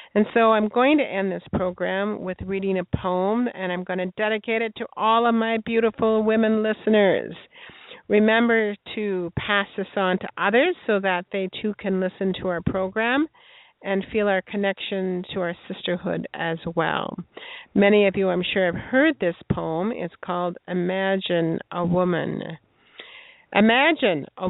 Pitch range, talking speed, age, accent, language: 185-230 Hz, 160 wpm, 50-69, American, English